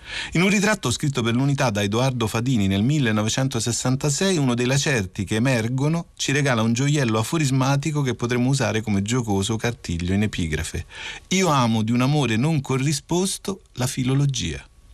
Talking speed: 155 wpm